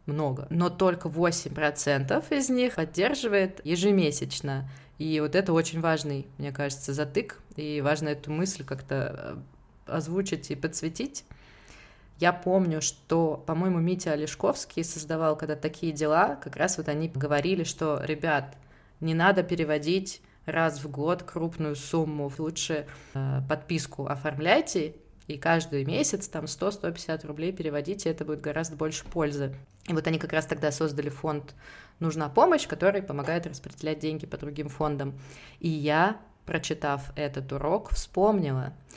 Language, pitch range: Russian, 145-175 Hz